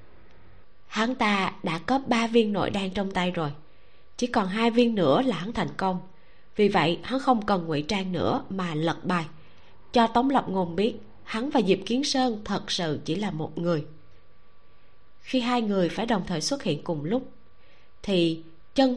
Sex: female